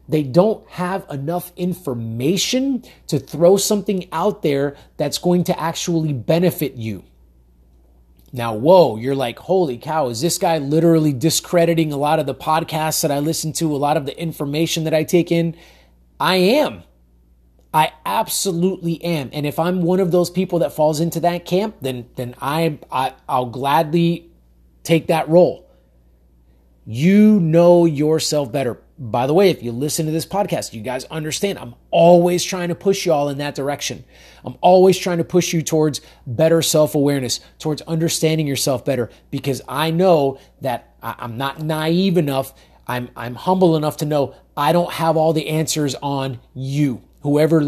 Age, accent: 30-49, American